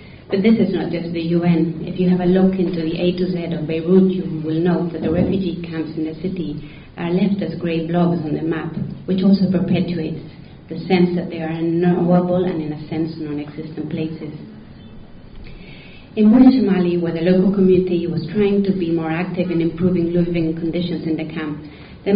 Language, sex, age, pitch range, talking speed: English, female, 30-49, 160-185 Hz, 200 wpm